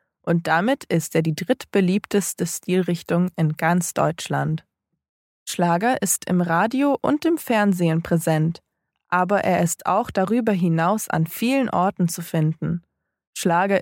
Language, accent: English, German